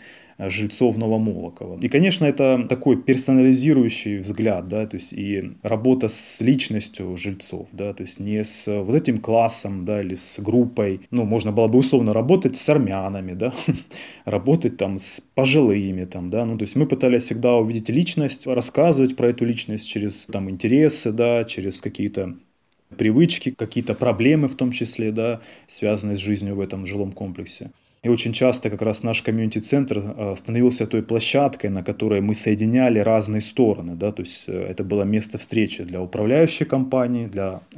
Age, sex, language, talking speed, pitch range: 20-39, male, Russian, 160 wpm, 100-125 Hz